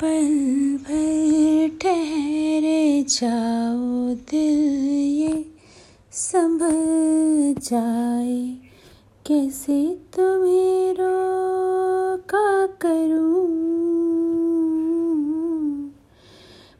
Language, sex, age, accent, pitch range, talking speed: Hindi, female, 30-49, native, 280-335 Hz, 45 wpm